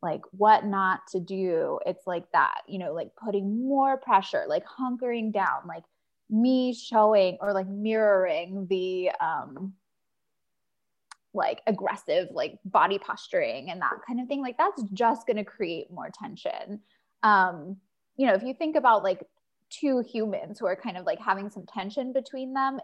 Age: 10-29